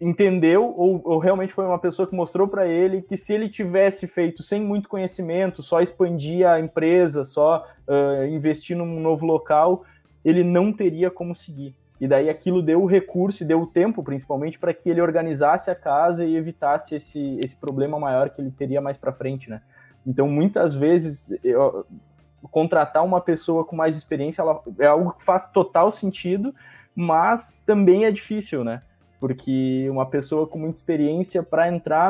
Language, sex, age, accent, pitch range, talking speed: Portuguese, male, 20-39, Brazilian, 140-180 Hz, 175 wpm